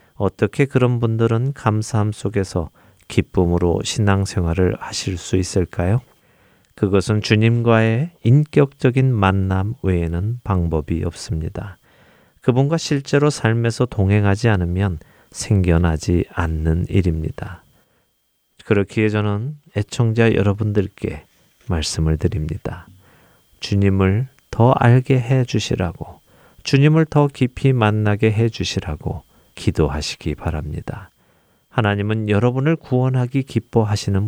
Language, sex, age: Korean, male, 40-59